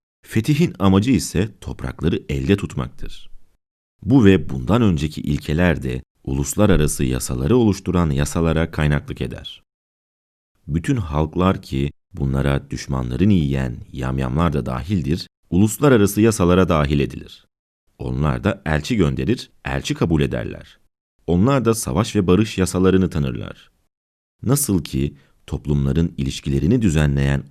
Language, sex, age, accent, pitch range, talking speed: Turkish, male, 40-59, native, 70-100 Hz, 110 wpm